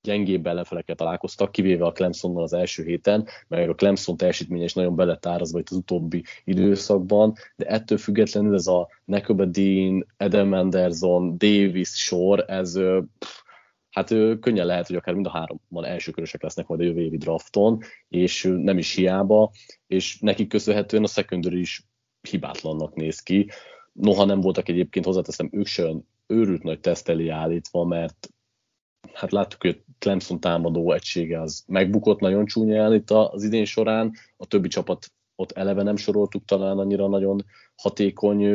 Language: Hungarian